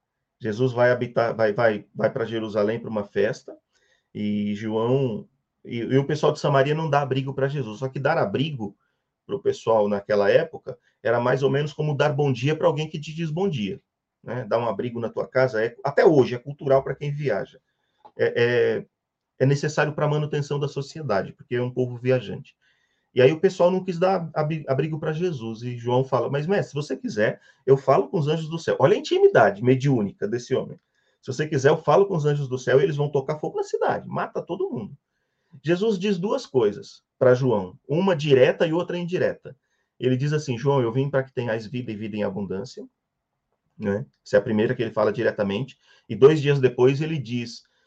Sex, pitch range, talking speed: male, 125-160 Hz, 210 wpm